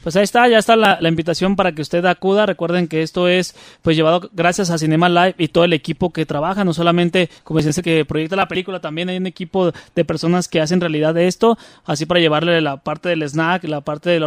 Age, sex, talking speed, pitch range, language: 30-49, male, 245 wpm, 155-185 Hz, Spanish